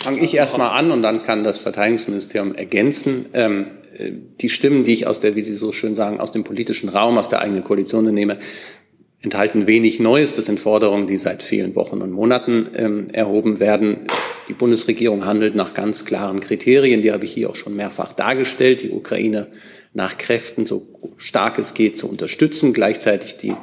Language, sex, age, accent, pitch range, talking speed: German, male, 40-59, German, 105-125 Hz, 185 wpm